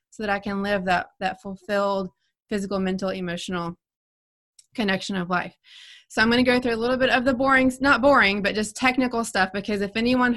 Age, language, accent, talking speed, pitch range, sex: 20-39, English, American, 205 wpm, 195-235 Hz, female